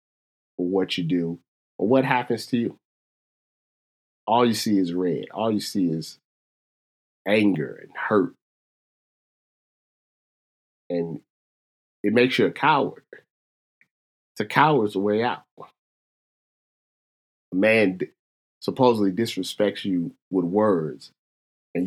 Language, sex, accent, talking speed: English, male, American, 110 wpm